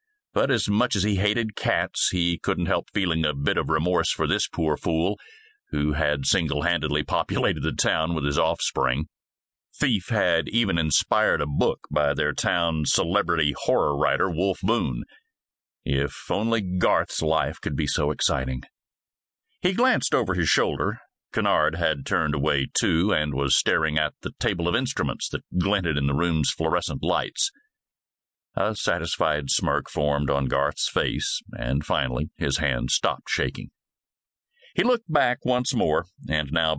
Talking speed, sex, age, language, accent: 155 wpm, male, 50-69, English, American